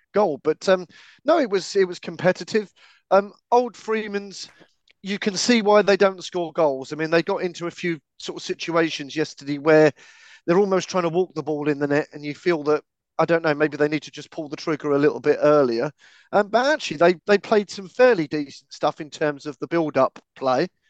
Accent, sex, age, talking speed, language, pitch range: British, male, 40-59, 225 wpm, English, 150-195 Hz